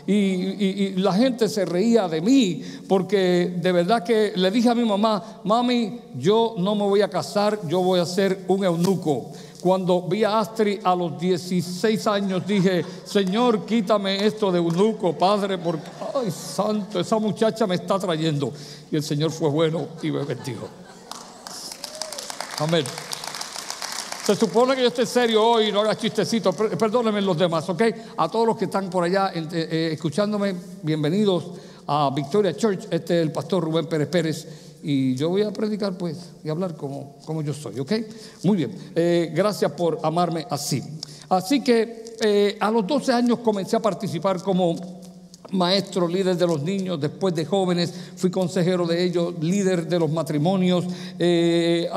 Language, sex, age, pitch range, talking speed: Spanish, male, 50-69, 160-200 Hz, 165 wpm